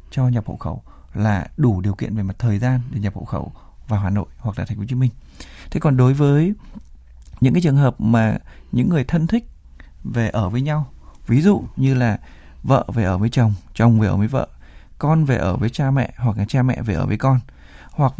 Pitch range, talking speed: 105-135 Hz, 235 wpm